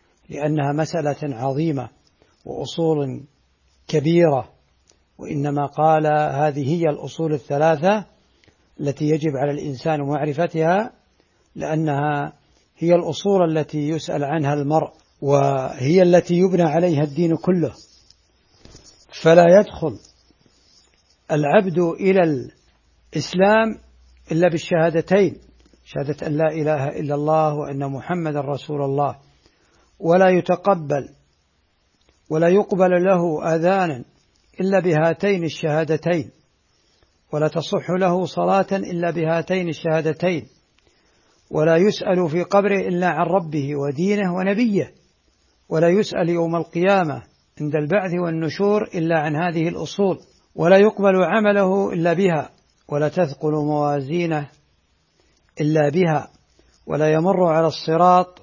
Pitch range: 145-180 Hz